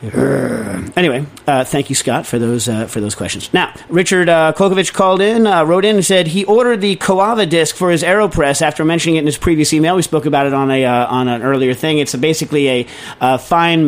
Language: English